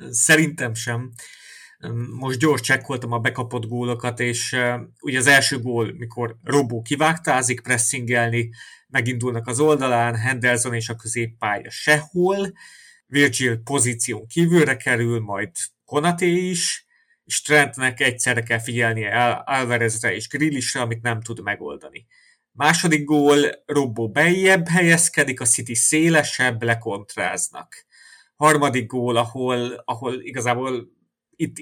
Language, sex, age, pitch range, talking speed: Hungarian, male, 30-49, 120-145 Hz, 115 wpm